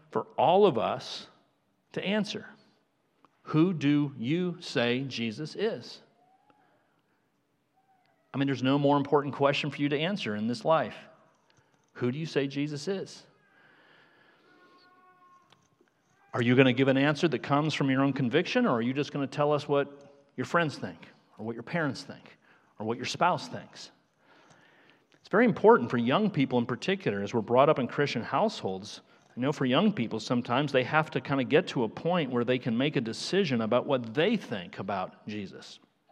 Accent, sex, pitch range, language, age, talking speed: American, male, 125-175 Hz, English, 40-59, 180 wpm